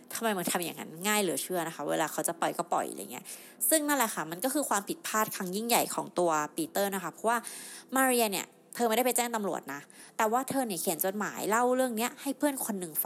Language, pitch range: Thai, 180-240 Hz